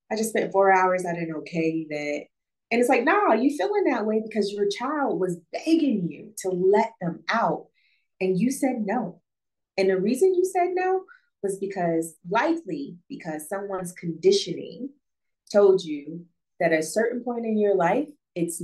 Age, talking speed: 30-49, 175 wpm